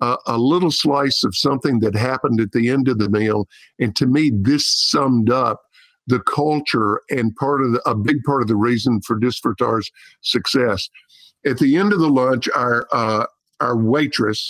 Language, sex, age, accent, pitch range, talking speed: English, male, 50-69, American, 115-145 Hz, 185 wpm